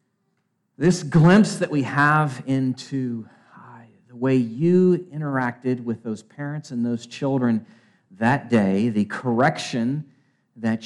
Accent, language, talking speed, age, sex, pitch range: American, English, 120 wpm, 40-59, male, 125-180 Hz